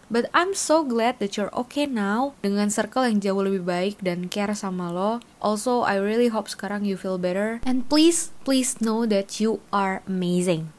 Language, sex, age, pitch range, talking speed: Indonesian, female, 20-39, 185-235 Hz, 190 wpm